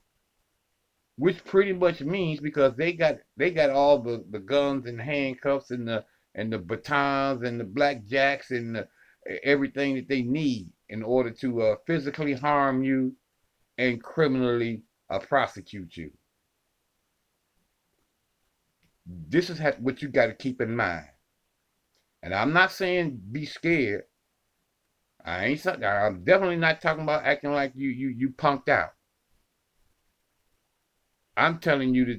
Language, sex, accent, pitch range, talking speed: English, male, American, 110-145 Hz, 140 wpm